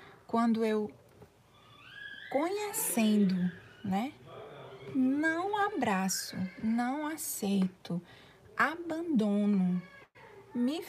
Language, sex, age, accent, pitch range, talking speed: Portuguese, female, 20-39, Brazilian, 185-265 Hz, 55 wpm